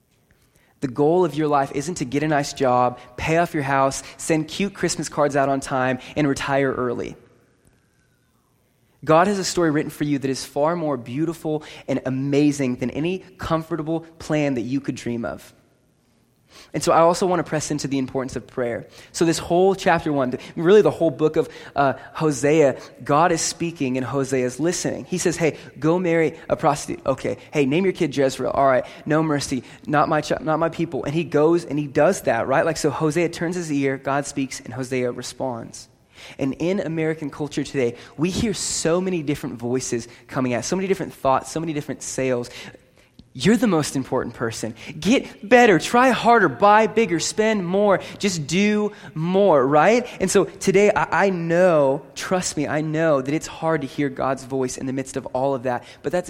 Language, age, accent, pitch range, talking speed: English, 20-39, American, 135-170 Hz, 195 wpm